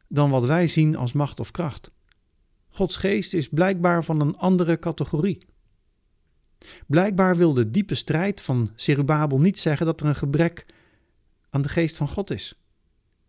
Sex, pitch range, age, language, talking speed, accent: male, 110-155 Hz, 50-69, Dutch, 160 wpm, Dutch